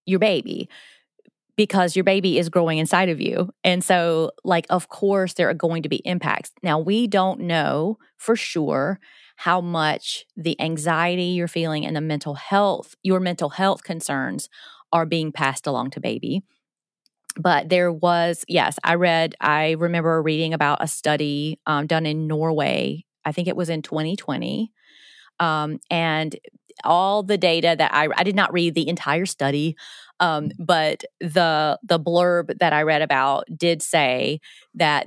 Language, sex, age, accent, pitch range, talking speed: English, female, 30-49, American, 155-185 Hz, 165 wpm